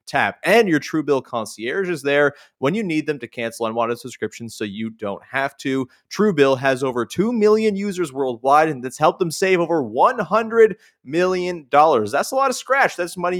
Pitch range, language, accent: 125-190 Hz, English, American